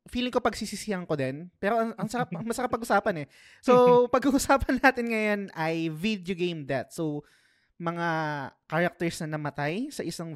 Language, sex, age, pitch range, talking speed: Filipino, male, 20-39, 145-180 Hz, 145 wpm